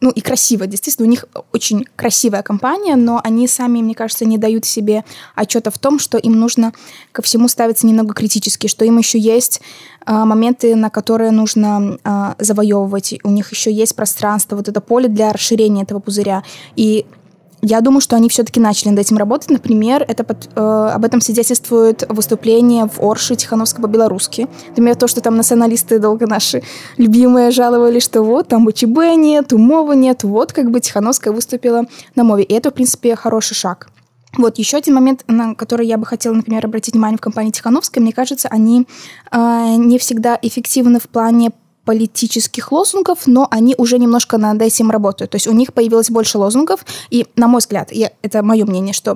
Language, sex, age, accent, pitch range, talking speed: Russian, female, 20-39, native, 220-245 Hz, 180 wpm